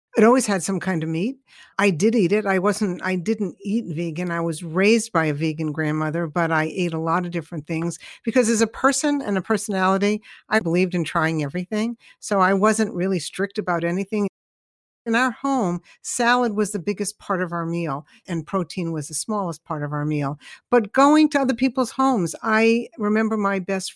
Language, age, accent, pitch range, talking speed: English, 60-79, American, 180-235 Hz, 205 wpm